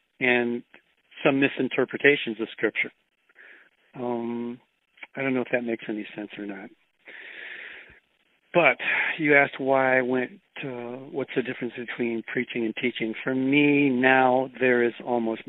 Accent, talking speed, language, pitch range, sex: American, 140 wpm, English, 115-130 Hz, male